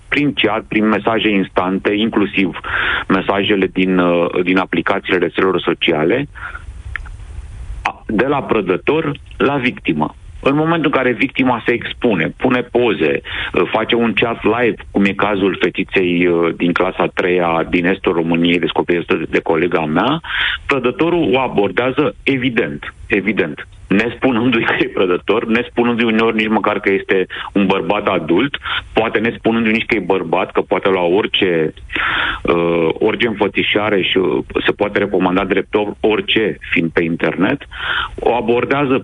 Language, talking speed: Romanian, 130 wpm